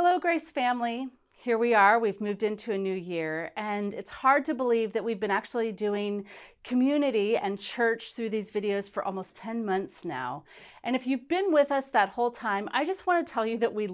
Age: 40-59